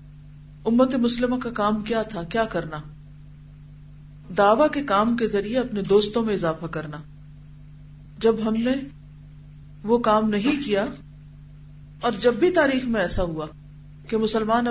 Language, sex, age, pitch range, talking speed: Urdu, female, 40-59, 150-230 Hz, 140 wpm